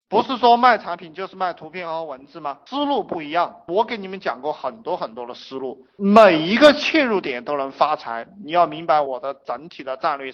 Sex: male